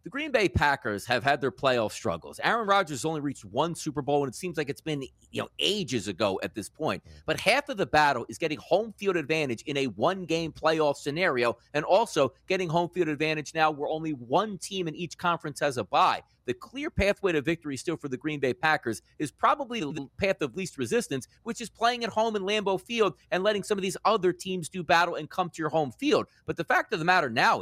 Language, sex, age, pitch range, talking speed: English, male, 30-49, 145-205 Hz, 235 wpm